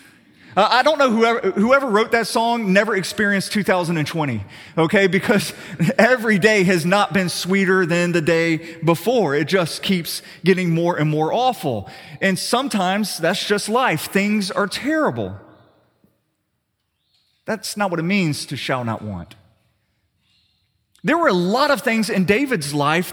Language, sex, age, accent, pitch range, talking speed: English, male, 30-49, American, 130-205 Hz, 150 wpm